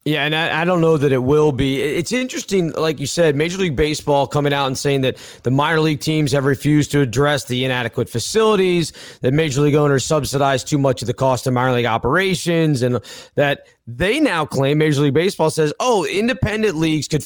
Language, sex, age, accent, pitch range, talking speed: English, male, 30-49, American, 135-160 Hz, 210 wpm